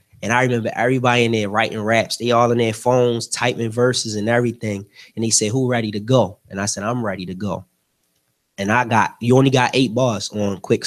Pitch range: 105-125 Hz